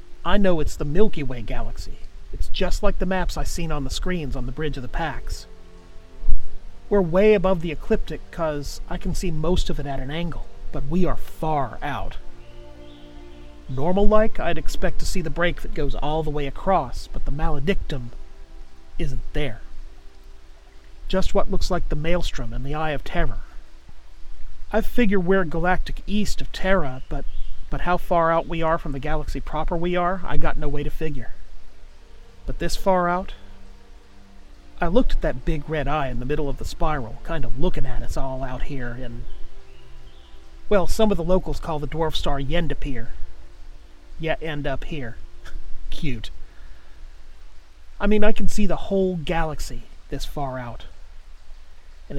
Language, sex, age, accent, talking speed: English, male, 40-59, American, 175 wpm